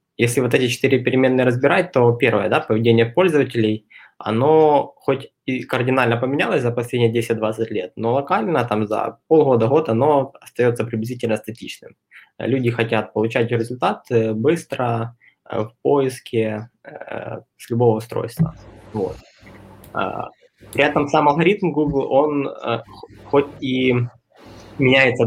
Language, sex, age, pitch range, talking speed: Russian, male, 20-39, 115-135 Hz, 115 wpm